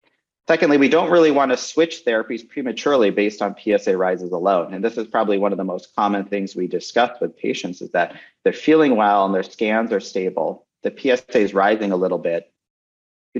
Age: 40-59